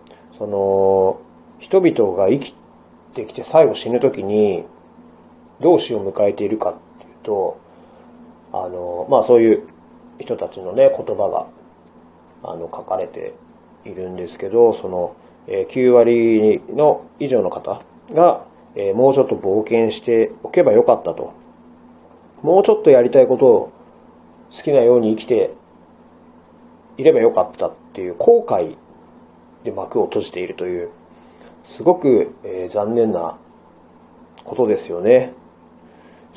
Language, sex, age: Japanese, male, 30-49